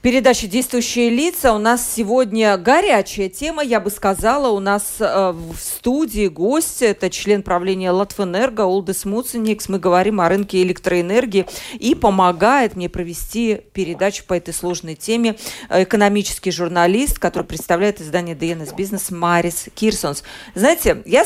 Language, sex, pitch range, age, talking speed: Russian, female, 185-255 Hz, 40-59, 135 wpm